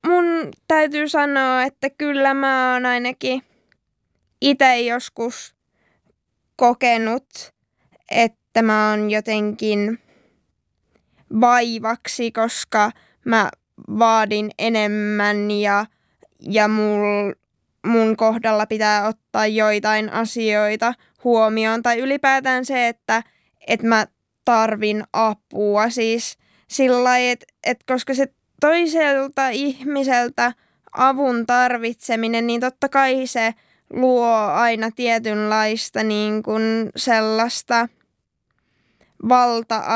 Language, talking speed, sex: Finnish, 85 wpm, female